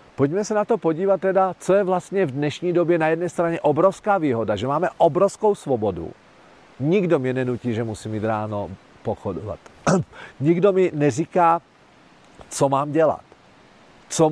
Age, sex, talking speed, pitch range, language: 40-59, male, 150 wpm, 115-170 Hz, Czech